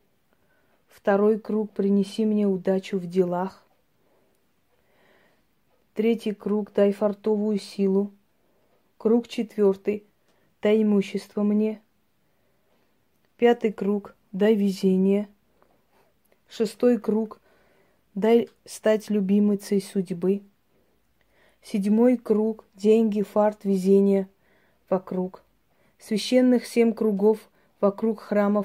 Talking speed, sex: 80 wpm, female